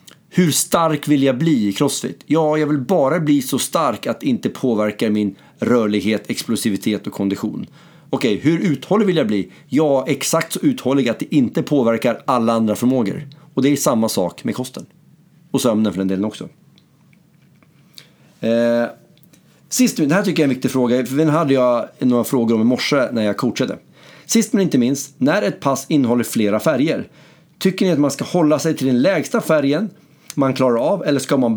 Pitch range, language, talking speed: 115-160 Hz, Swedish, 195 wpm